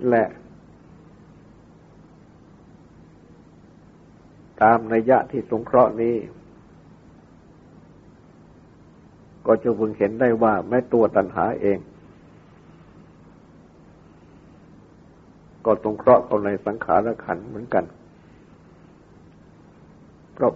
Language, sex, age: Thai, male, 60-79